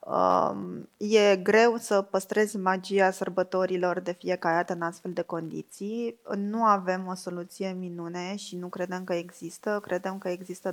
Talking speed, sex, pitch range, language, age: 150 wpm, female, 180-215 Hz, Romanian, 20-39